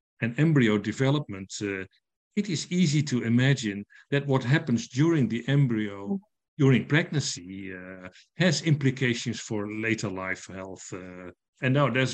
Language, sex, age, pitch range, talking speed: English, male, 50-69, 105-145 Hz, 140 wpm